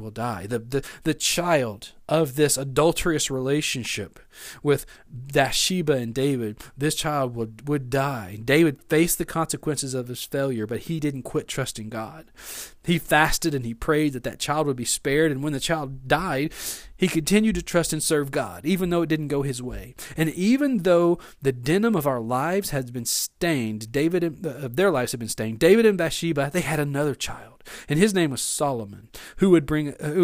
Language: English